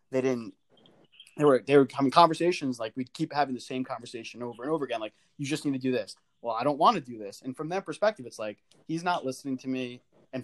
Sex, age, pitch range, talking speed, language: male, 20-39, 125-155 Hz, 260 wpm, English